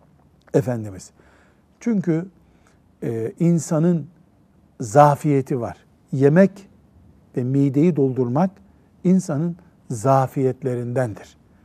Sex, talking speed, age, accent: male, 60 wpm, 60-79, native